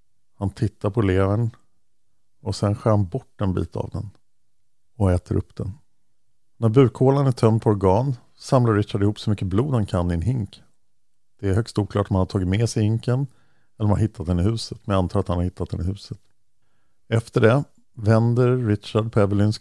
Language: Swedish